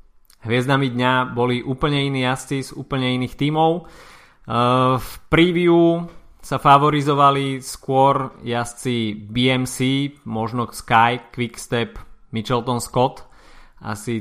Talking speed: 95 wpm